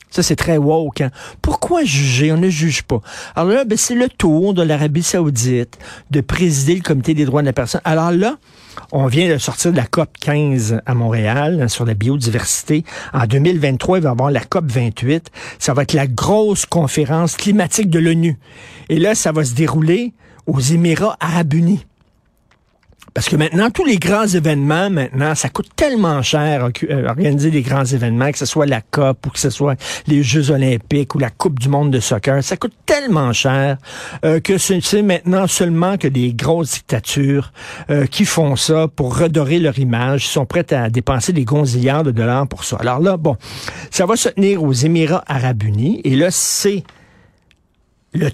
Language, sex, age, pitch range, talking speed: French, male, 50-69, 135-170 Hz, 195 wpm